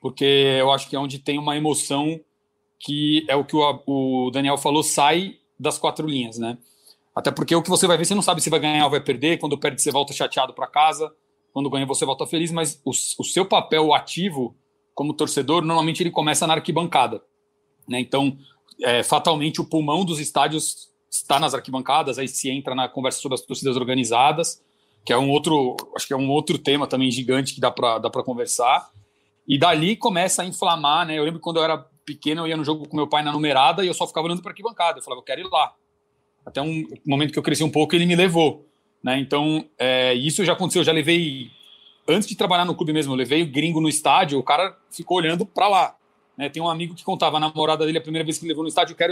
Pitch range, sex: 140-170 Hz, male